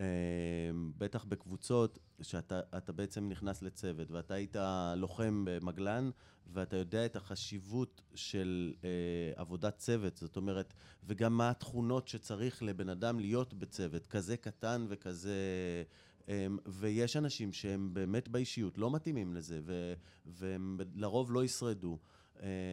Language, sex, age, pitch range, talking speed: Hebrew, male, 30-49, 95-120 Hz, 115 wpm